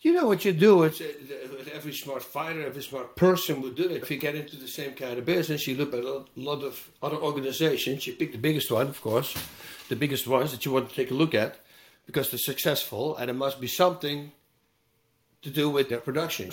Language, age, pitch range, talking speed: English, 60-79, 145-175 Hz, 225 wpm